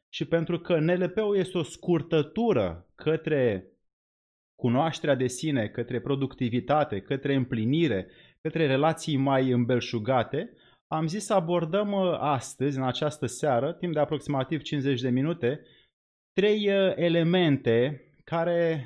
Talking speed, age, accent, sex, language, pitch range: 115 wpm, 30-49, native, male, Romanian, 130-175 Hz